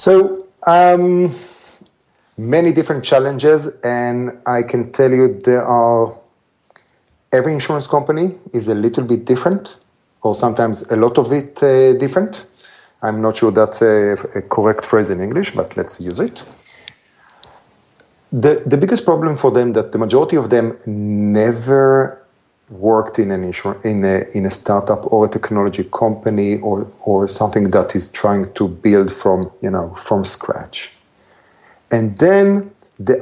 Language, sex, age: English, male, 30-49